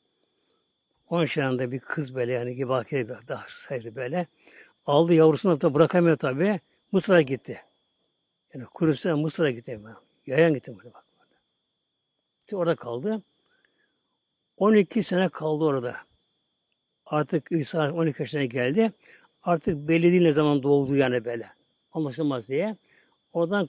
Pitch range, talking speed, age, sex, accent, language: 135-185 Hz, 125 wpm, 60-79, male, native, Turkish